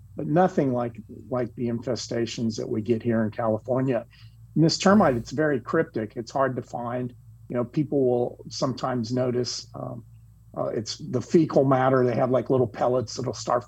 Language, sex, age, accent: English, male, 40-59, American